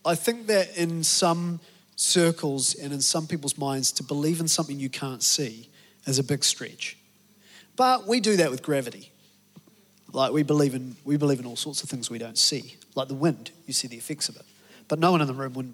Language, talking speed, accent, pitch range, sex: English, 220 wpm, Australian, 135-160 Hz, male